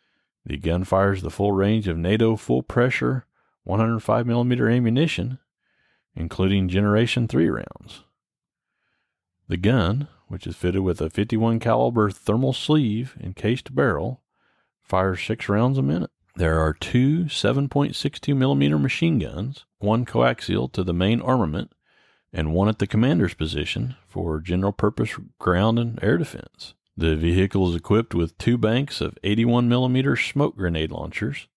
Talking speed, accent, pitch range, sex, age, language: 135 wpm, American, 90-115 Hz, male, 40-59, English